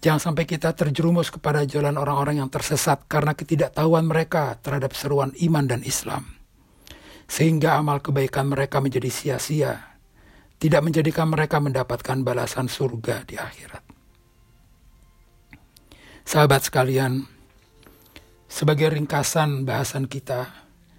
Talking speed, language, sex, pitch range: 105 wpm, Indonesian, male, 125-150 Hz